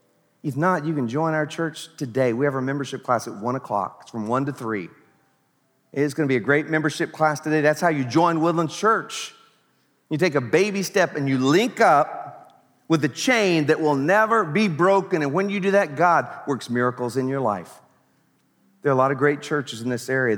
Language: English